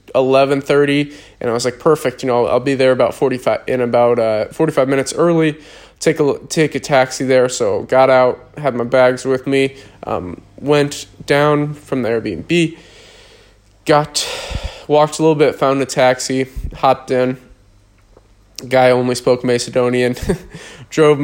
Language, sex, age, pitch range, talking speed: English, male, 20-39, 125-140 Hz, 150 wpm